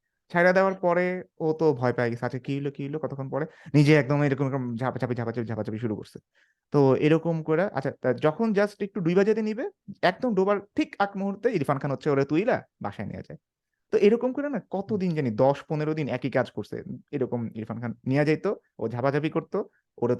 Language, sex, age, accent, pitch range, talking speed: Bengali, male, 30-49, native, 120-170 Hz, 170 wpm